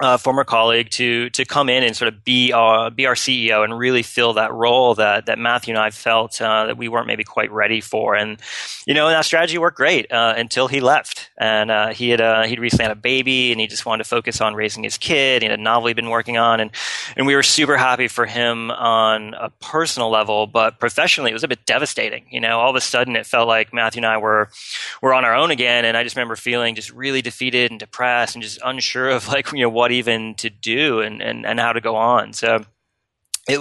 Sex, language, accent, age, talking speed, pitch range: male, English, American, 20-39, 250 wpm, 110-125 Hz